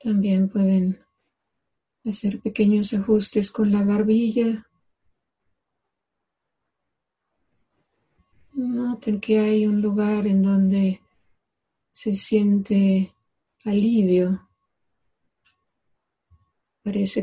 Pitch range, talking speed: 190-210 Hz, 65 wpm